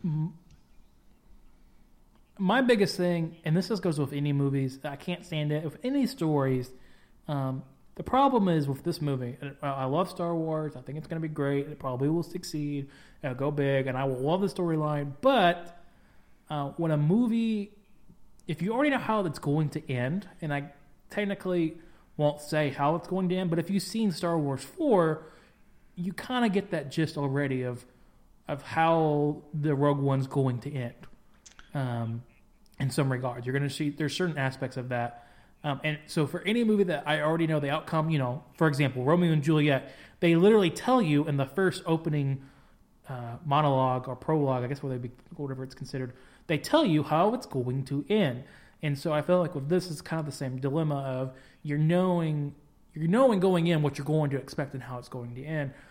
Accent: American